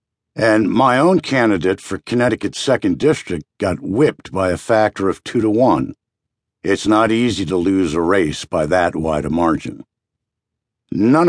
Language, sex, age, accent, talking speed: English, male, 60-79, American, 160 wpm